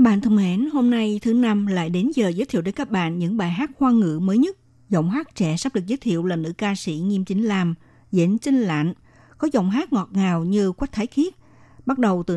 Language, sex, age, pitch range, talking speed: Vietnamese, female, 60-79, 175-235 Hz, 245 wpm